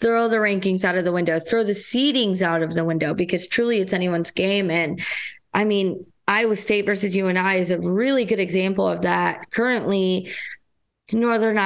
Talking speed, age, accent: 190 wpm, 20-39, American